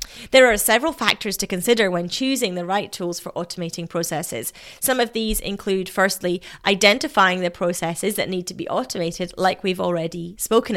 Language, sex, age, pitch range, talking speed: English, female, 30-49, 195-250 Hz, 175 wpm